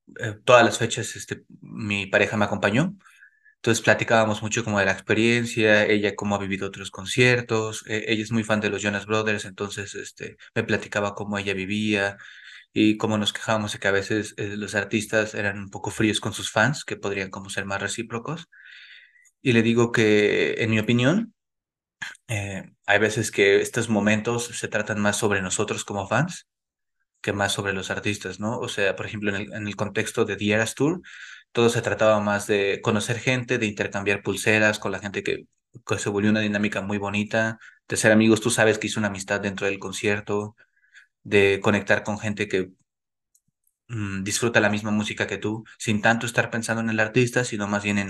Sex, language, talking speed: male, English, 190 wpm